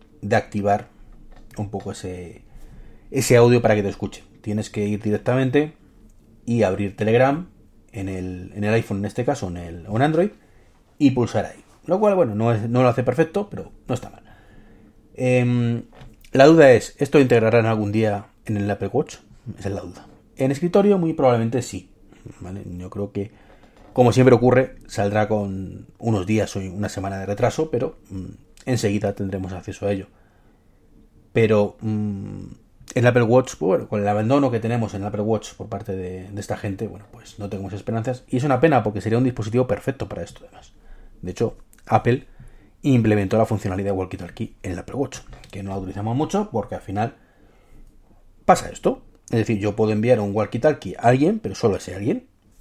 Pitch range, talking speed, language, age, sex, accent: 100-125 Hz, 185 wpm, Spanish, 30-49, male, Spanish